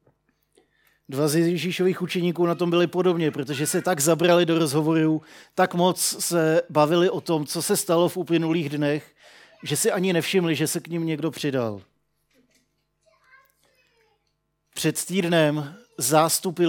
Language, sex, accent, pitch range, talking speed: Czech, male, native, 150-175 Hz, 140 wpm